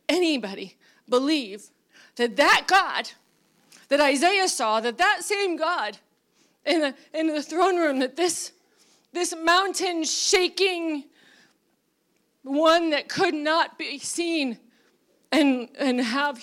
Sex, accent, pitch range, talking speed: female, American, 255-345 Hz, 115 wpm